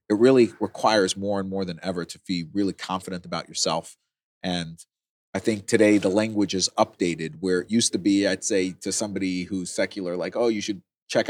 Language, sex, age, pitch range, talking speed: English, male, 30-49, 95-115 Hz, 200 wpm